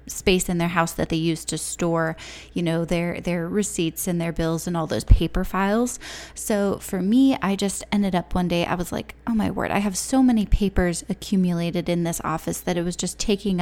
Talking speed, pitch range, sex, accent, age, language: 225 wpm, 170-195 Hz, female, American, 10-29, English